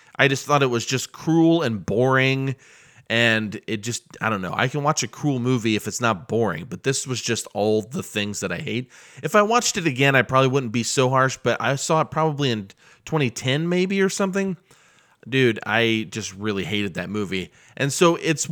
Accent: American